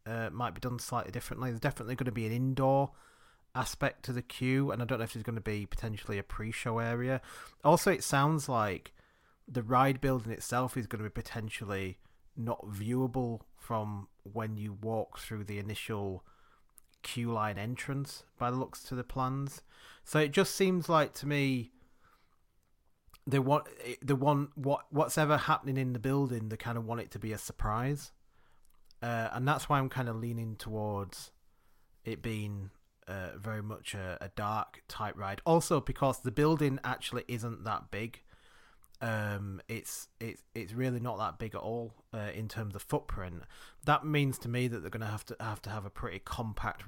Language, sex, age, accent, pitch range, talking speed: English, male, 30-49, British, 105-130 Hz, 185 wpm